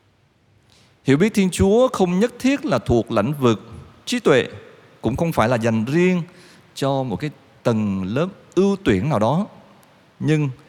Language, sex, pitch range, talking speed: Vietnamese, male, 105-150 Hz, 165 wpm